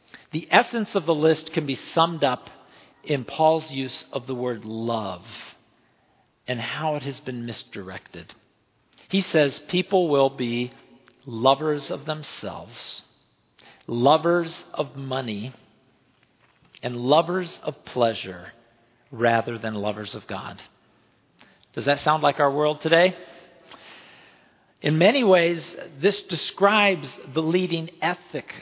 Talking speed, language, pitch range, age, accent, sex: 120 wpm, English, 130-180 Hz, 50-69, American, male